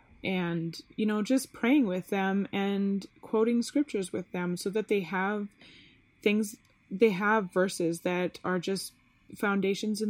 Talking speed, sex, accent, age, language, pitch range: 150 wpm, female, American, 20-39, English, 175-210 Hz